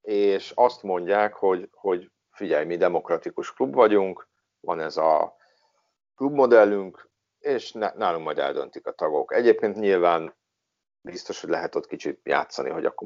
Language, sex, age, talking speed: Hungarian, male, 50-69, 140 wpm